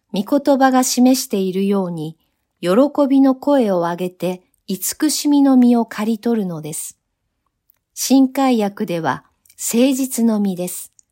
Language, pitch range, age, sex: Japanese, 185-255 Hz, 50-69, female